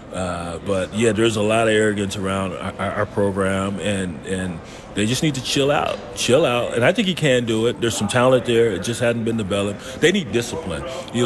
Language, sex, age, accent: English, male, 30-49, American